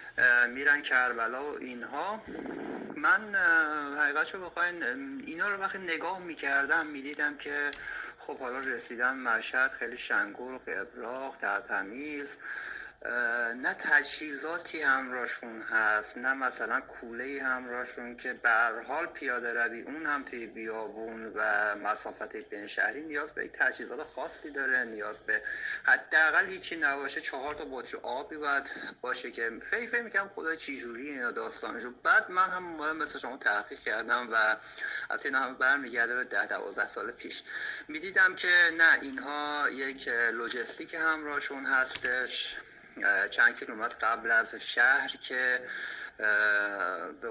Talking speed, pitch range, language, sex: 125 wpm, 125-190 Hz, Persian, male